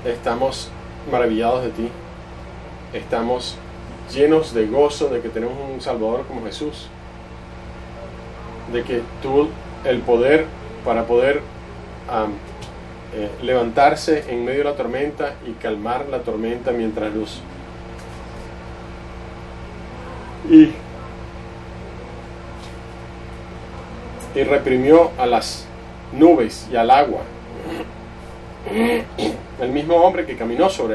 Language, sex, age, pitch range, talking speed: English, male, 40-59, 90-145 Hz, 95 wpm